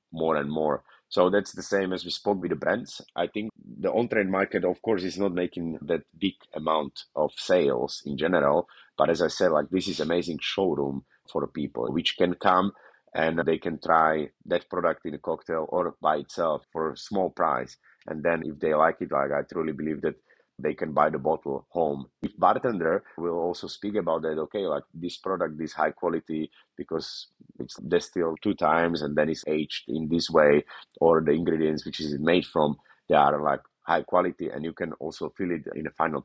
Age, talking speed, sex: 30-49, 205 wpm, male